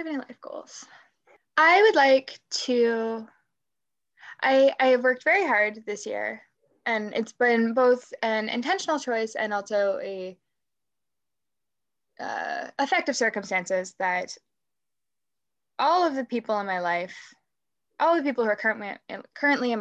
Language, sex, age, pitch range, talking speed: English, female, 10-29, 200-275 Hz, 135 wpm